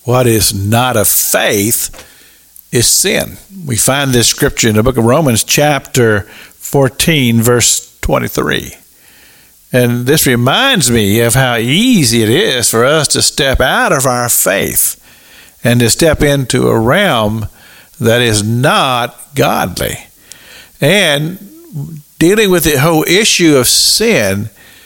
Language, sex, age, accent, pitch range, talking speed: English, male, 50-69, American, 120-150 Hz, 135 wpm